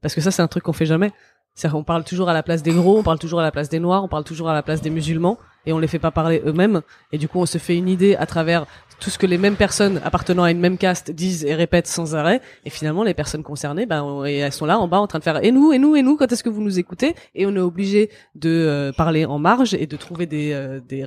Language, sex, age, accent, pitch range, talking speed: French, female, 20-39, French, 160-205 Hz, 310 wpm